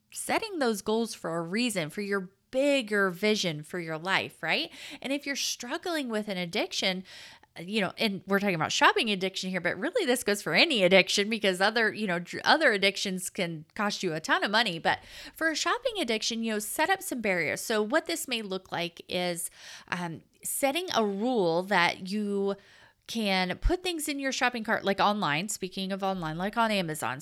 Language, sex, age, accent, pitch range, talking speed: English, female, 30-49, American, 185-245 Hz, 195 wpm